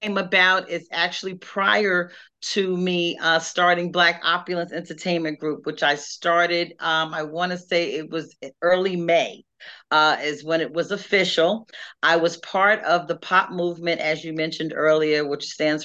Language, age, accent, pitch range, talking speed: English, 40-59, American, 150-180 Hz, 165 wpm